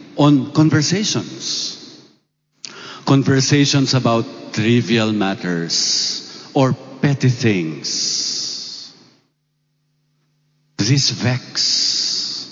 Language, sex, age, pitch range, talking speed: Indonesian, male, 50-69, 115-150 Hz, 55 wpm